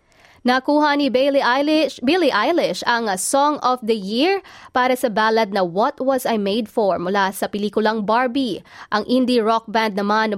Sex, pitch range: female, 210-265 Hz